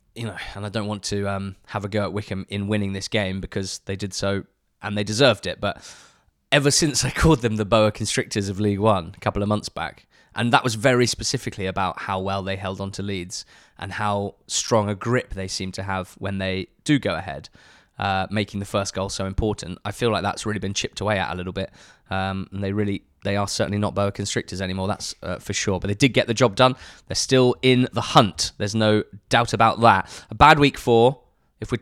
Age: 20-39